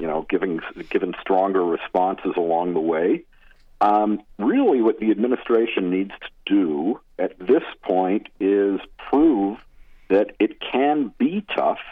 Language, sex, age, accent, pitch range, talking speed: English, male, 50-69, American, 100-150 Hz, 135 wpm